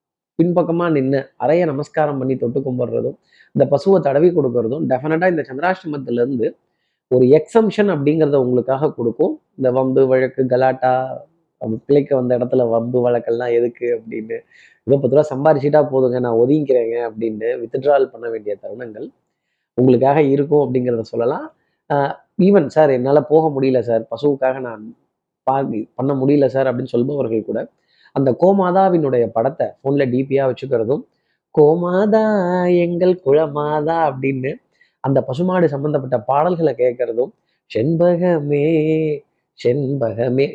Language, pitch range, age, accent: Tamil, 130-170 Hz, 20-39, native